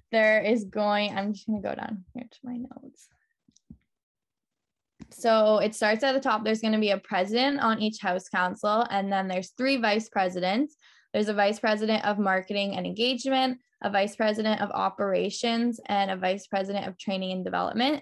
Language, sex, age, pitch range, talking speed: English, female, 10-29, 195-235 Hz, 185 wpm